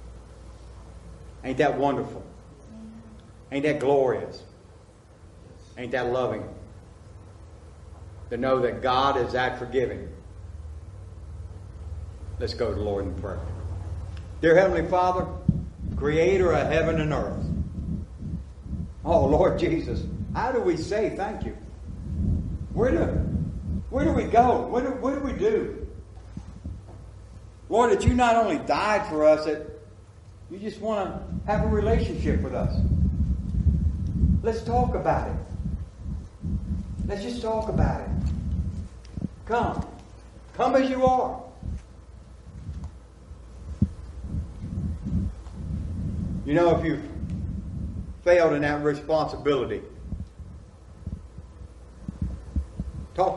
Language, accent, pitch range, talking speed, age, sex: English, American, 85-125 Hz, 105 wpm, 60-79, male